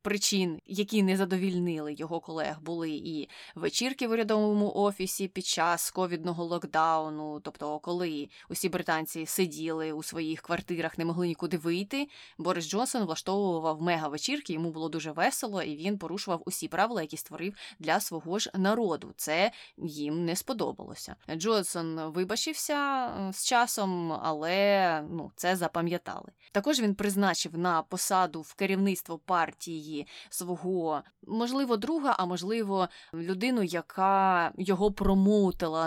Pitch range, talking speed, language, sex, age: 165-205 Hz, 125 wpm, Ukrainian, female, 20-39